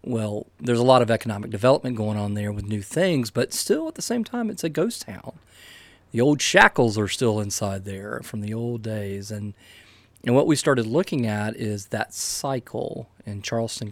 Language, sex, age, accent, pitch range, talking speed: English, male, 40-59, American, 100-120 Hz, 200 wpm